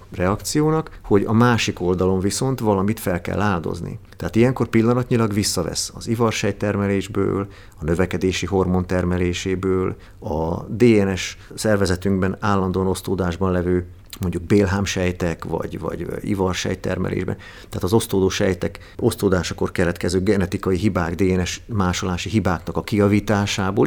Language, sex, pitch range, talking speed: Hungarian, male, 90-110 Hz, 110 wpm